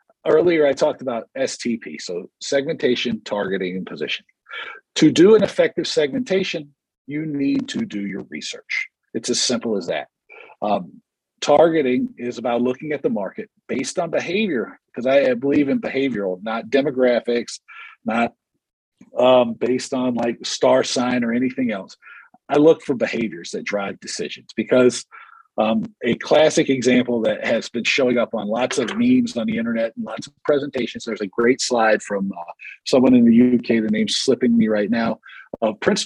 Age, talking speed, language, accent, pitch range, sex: 50-69, 170 wpm, English, American, 120-160 Hz, male